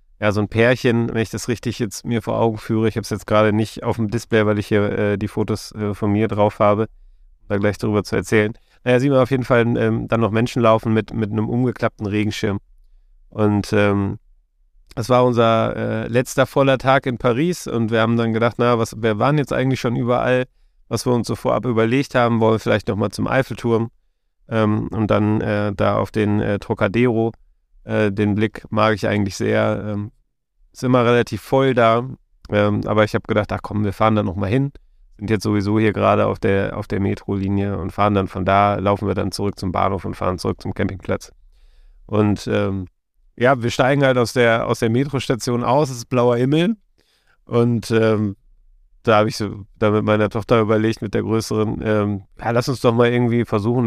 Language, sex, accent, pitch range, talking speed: German, male, German, 100-120 Hz, 205 wpm